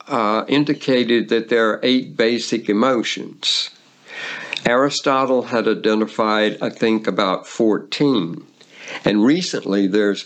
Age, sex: 60-79, male